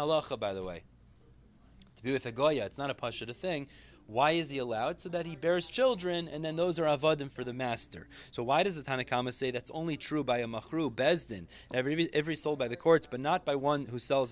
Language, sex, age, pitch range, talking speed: English, male, 30-49, 125-170 Hz, 230 wpm